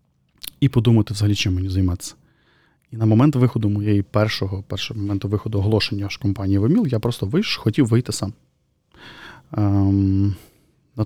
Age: 20-39